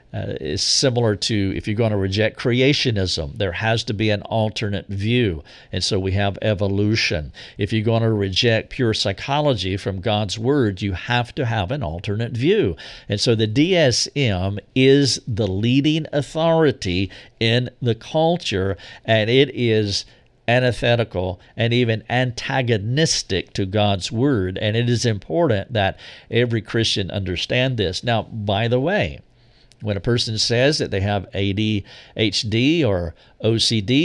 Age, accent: 50-69, American